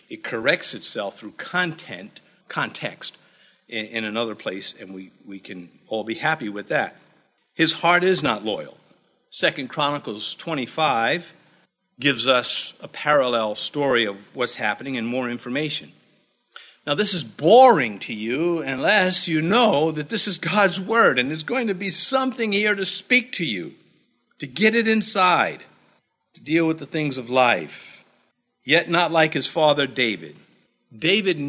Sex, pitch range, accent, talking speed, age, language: male, 125-195 Hz, American, 155 wpm, 50-69, English